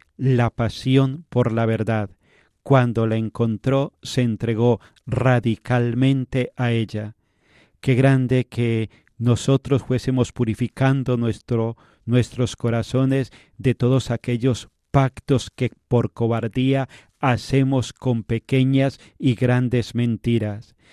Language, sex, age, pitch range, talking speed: Spanish, male, 40-59, 115-130 Hz, 100 wpm